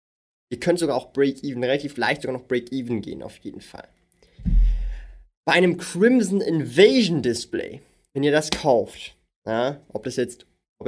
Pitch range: 120-155 Hz